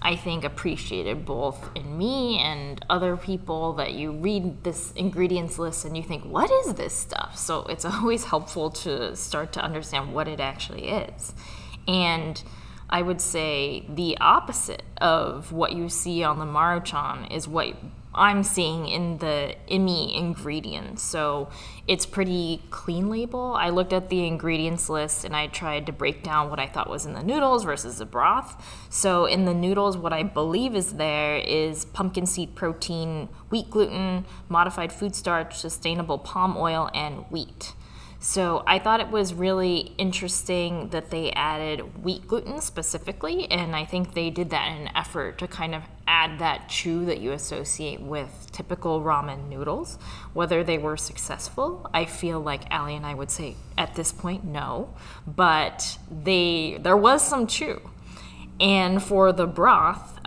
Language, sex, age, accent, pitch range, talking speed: English, female, 20-39, American, 155-185 Hz, 165 wpm